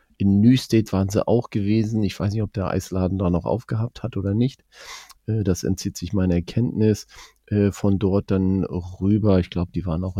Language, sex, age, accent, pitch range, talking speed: German, male, 40-59, German, 90-110 Hz, 195 wpm